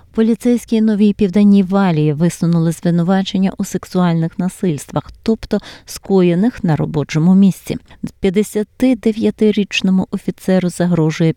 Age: 30-49